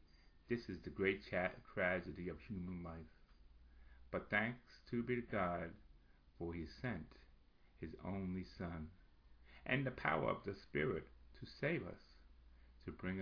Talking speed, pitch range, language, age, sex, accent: 130 wpm, 65-100 Hz, English, 60-79, male, American